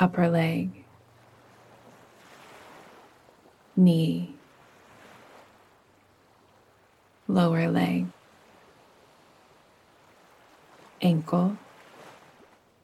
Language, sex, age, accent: English, female, 30-49, American